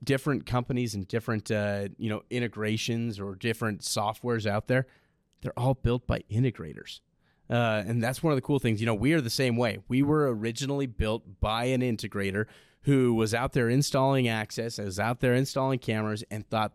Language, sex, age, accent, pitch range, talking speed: English, male, 30-49, American, 105-130 Hz, 190 wpm